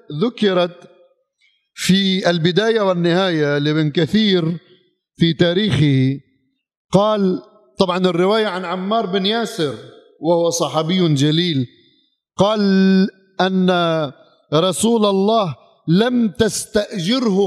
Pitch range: 155-205 Hz